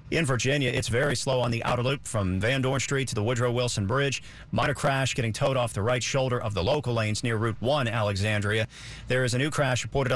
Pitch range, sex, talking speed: 115-145 Hz, male, 235 wpm